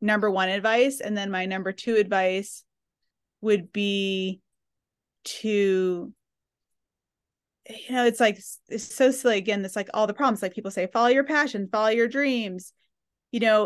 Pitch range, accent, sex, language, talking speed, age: 185-220 Hz, American, female, English, 160 wpm, 30-49